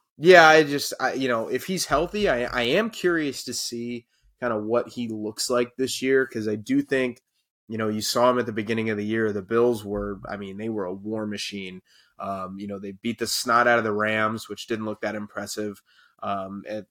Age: 20-39